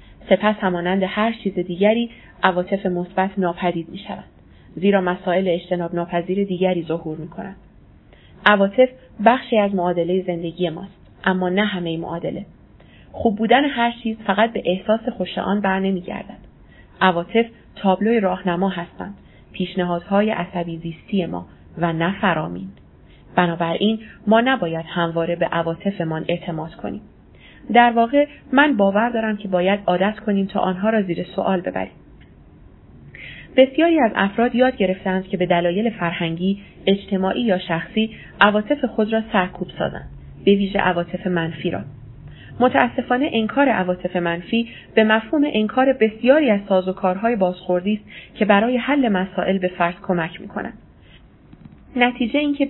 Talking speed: 135 wpm